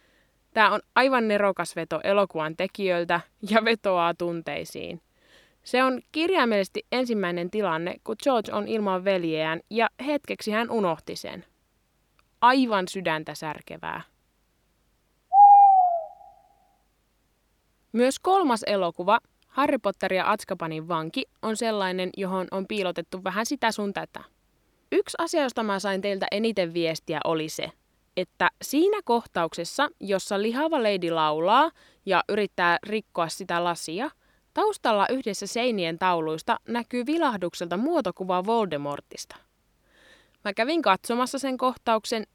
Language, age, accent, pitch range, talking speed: Finnish, 20-39, native, 180-250 Hz, 115 wpm